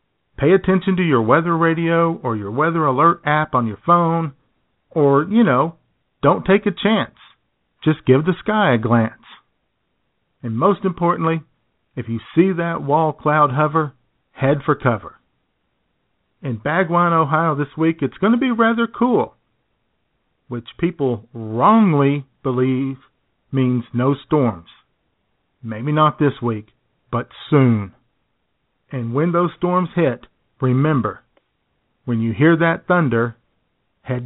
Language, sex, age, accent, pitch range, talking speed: English, male, 40-59, American, 125-175 Hz, 135 wpm